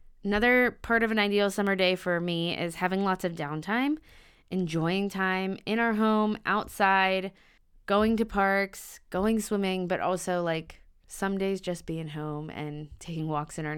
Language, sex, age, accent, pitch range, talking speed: English, female, 20-39, American, 150-195 Hz, 165 wpm